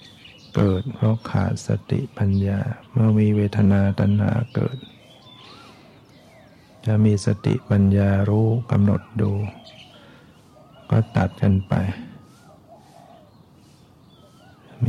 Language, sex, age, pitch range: Thai, male, 60-79, 100-115 Hz